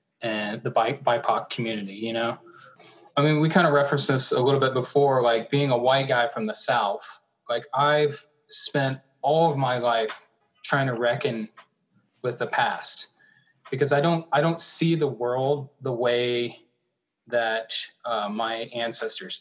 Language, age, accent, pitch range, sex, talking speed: English, 20-39, American, 120-150 Hz, male, 160 wpm